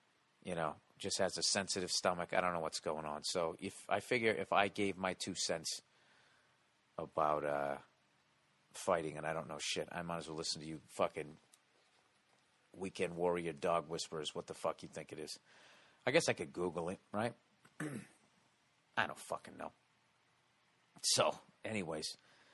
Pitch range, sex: 90-110 Hz, male